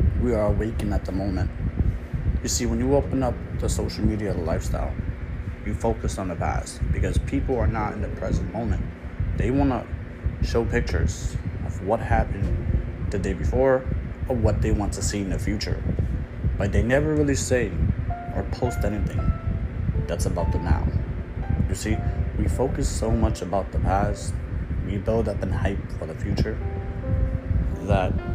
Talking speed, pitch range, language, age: 165 wpm, 85-110 Hz, English, 30-49